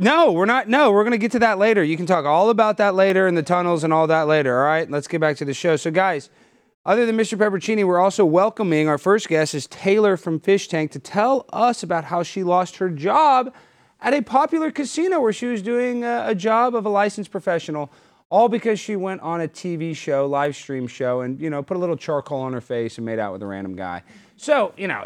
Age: 30-49